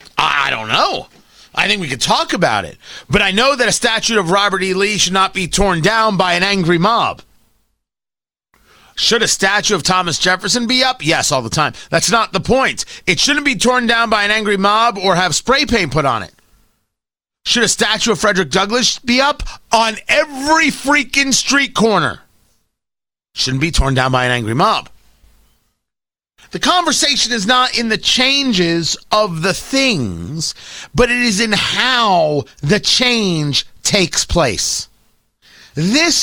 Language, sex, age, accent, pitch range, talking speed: English, male, 30-49, American, 160-240 Hz, 170 wpm